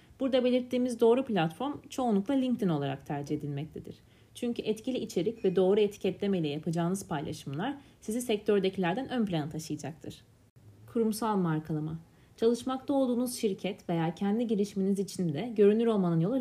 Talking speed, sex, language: 130 wpm, female, Turkish